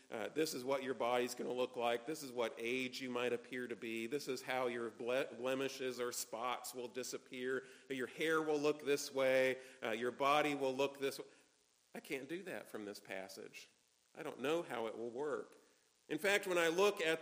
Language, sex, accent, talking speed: English, male, American, 215 wpm